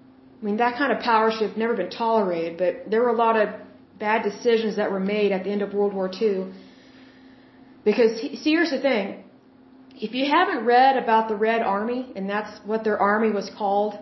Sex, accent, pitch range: female, American, 205-260 Hz